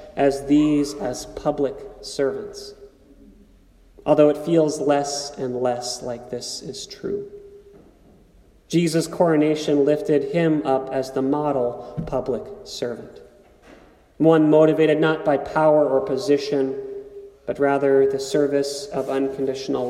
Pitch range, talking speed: 135-160 Hz, 115 wpm